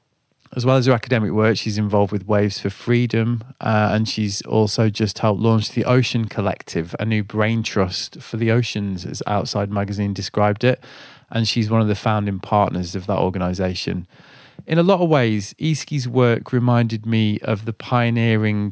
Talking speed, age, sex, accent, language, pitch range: 180 wpm, 20-39, male, British, English, 105-120 Hz